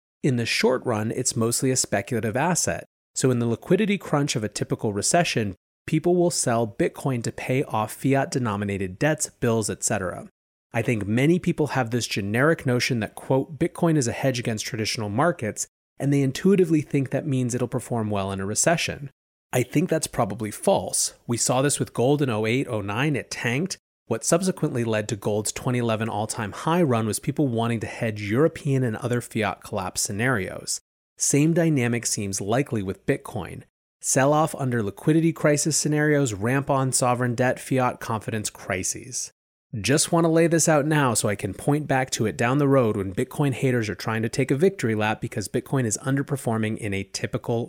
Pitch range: 110-145 Hz